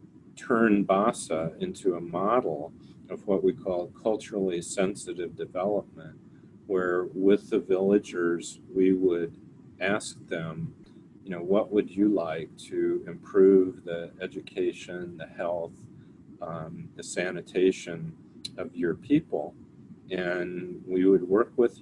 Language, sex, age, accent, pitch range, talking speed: English, male, 40-59, American, 85-95 Hz, 120 wpm